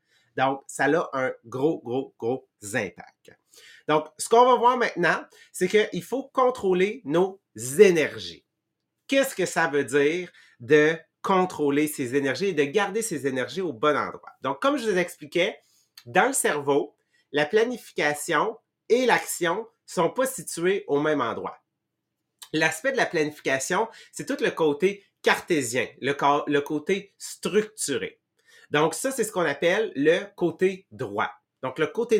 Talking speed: 150 wpm